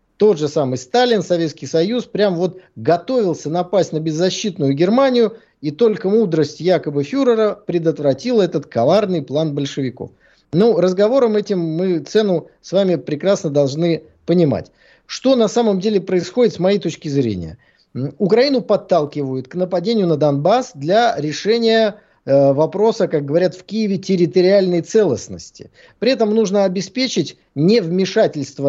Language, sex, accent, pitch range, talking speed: Russian, male, native, 155-210 Hz, 130 wpm